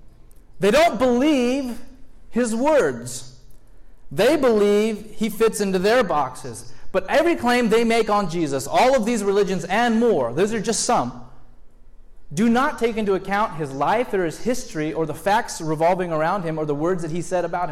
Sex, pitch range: male, 150-220 Hz